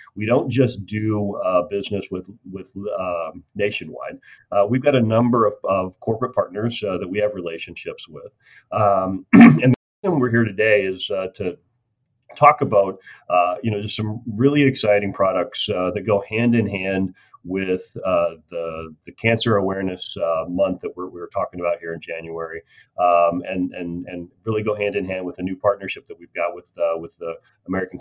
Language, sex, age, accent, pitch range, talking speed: English, male, 40-59, American, 90-115 Hz, 190 wpm